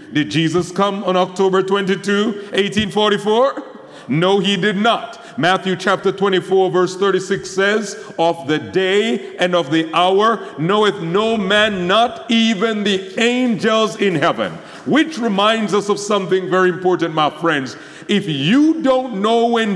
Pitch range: 175-225 Hz